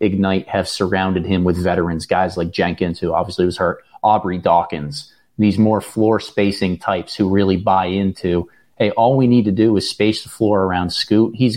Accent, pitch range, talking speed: American, 95-110 Hz, 190 wpm